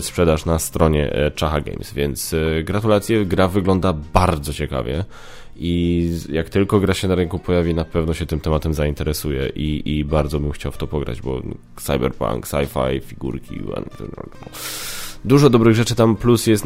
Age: 10-29